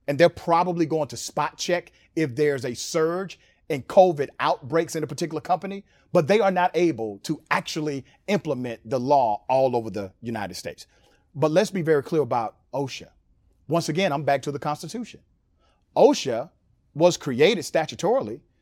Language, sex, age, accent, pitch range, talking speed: English, male, 40-59, American, 145-190 Hz, 165 wpm